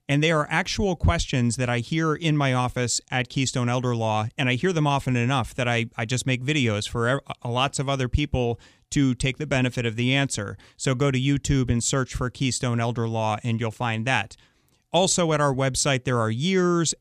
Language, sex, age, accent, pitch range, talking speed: English, male, 30-49, American, 115-145 Hz, 210 wpm